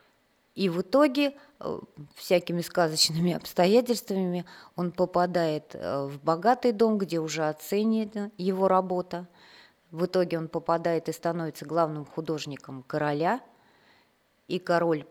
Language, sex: Russian, female